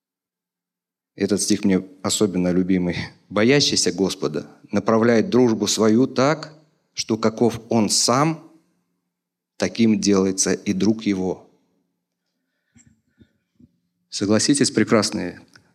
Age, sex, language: 40-59, male, English